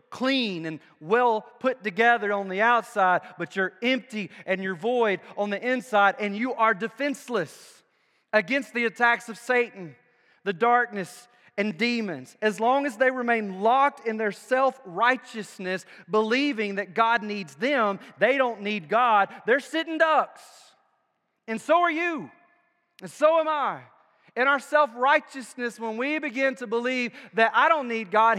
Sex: male